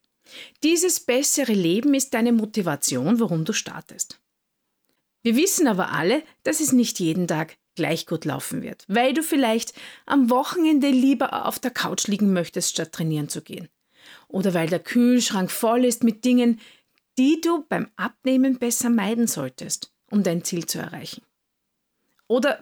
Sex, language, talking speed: female, German, 155 wpm